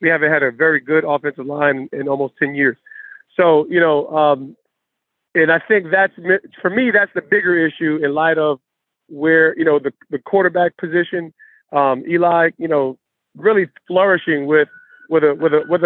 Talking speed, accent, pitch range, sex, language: 180 wpm, American, 150-185 Hz, male, English